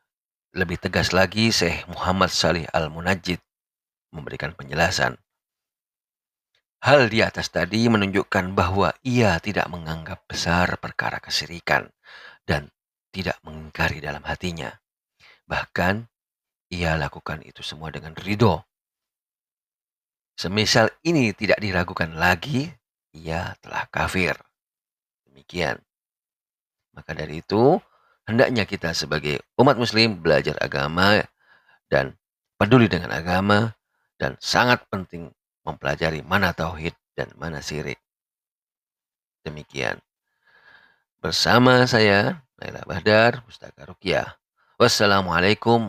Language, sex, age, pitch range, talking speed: Indonesian, male, 40-59, 80-105 Hz, 95 wpm